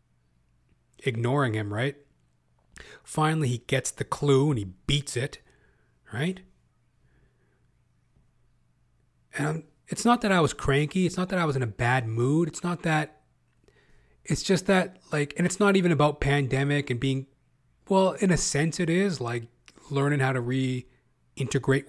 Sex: male